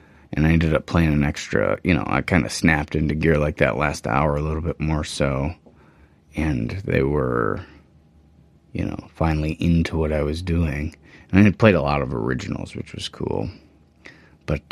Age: 30-49